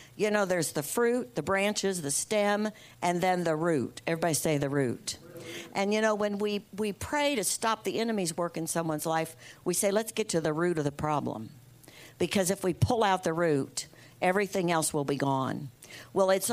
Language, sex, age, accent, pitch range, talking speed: English, female, 60-79, American, 150-200 Hz, 205 wpm